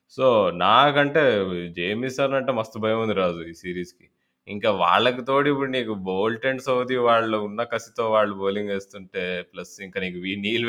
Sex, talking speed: male, 165 wpm